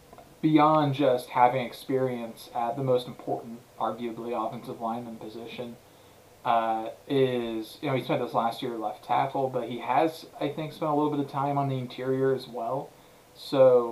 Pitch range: 120-145 Hz